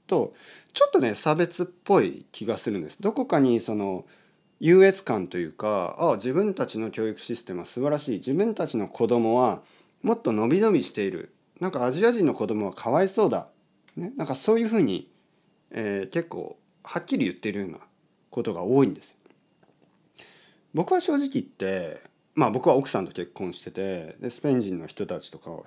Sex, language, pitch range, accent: male, Japanese, 115-190 Hz, native